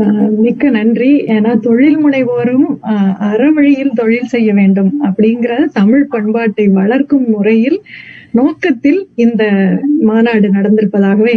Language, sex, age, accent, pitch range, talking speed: Tamil, female, 30-49, native, 215-280 Hz, 100 wpm